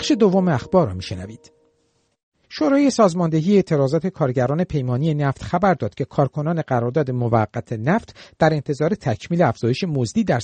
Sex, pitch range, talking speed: male, 125-190 Hz, 140 wpm